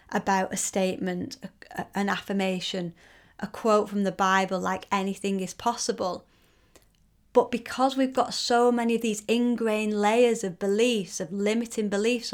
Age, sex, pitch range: 30-49, female, 195-225 Hz